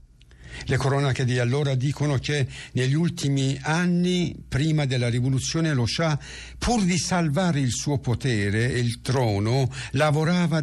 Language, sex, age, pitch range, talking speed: Italian, male, 60-79, 120-150 Hz, 135 wpm